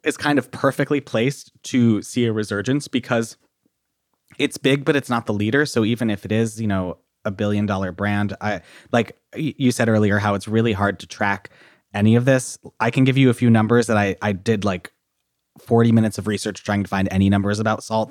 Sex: male